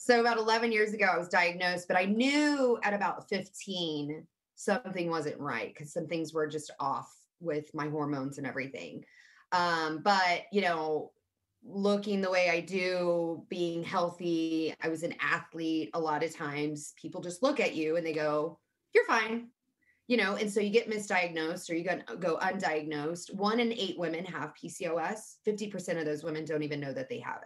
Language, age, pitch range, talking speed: English, 20-39, 160-210 Hz, 185 wpm